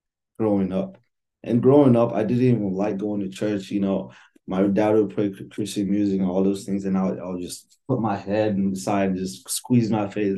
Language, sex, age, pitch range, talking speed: English, male, 20-39, 95-110 Hz, 220 wpm